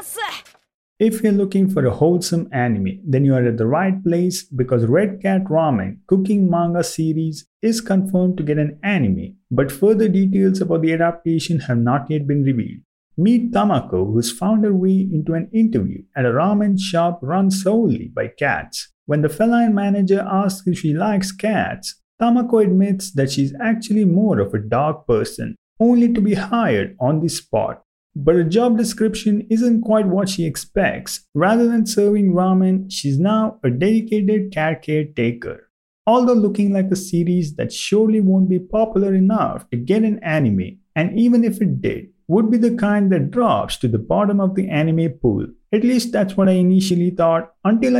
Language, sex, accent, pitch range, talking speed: English, male, Indian, 160-215 Hz, 180 wpm